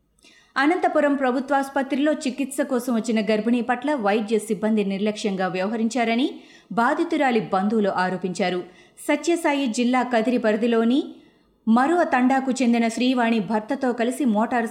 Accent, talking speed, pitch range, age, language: native, 100 wpm, 200-260 Hz, 20-39, Telugu